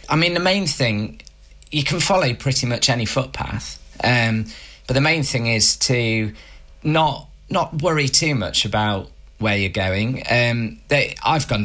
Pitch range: 100-120 Hz